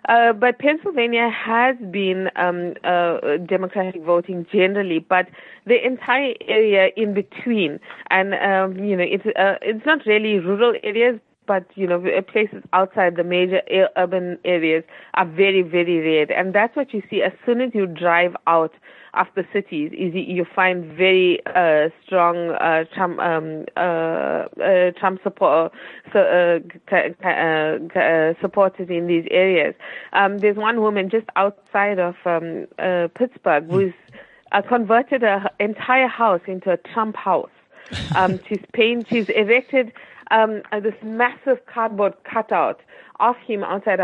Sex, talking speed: female, 130 wpm